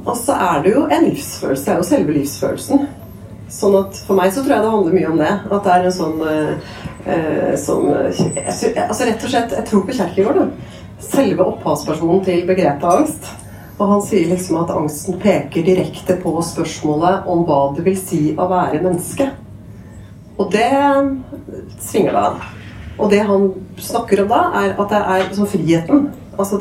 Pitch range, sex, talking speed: 155-195 Hz, female, 175 wpm